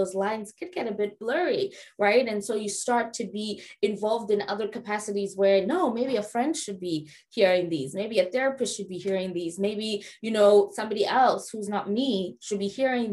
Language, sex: English, female